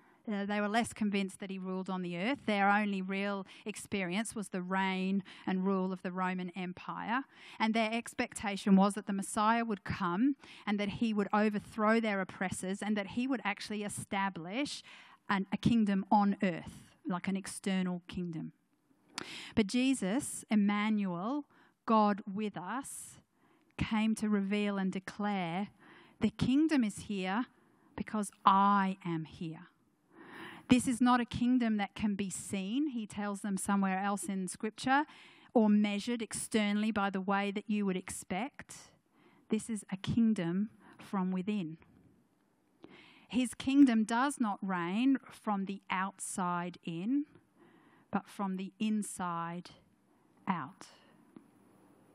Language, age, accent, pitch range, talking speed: English, 40-59, Australian, 190-230 Hz, 135 wpm